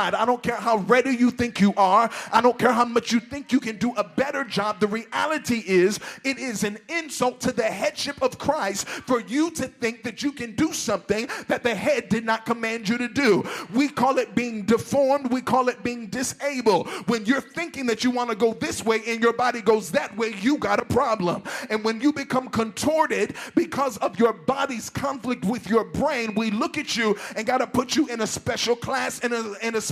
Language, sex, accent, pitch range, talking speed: English, male, American, 230-270 Hz, 225 wpm